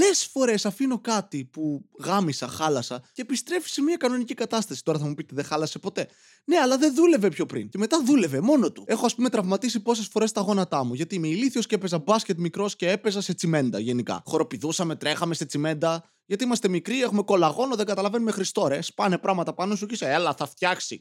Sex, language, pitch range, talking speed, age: male, Greek, 155-230 Hz, 205 wpm, 20-39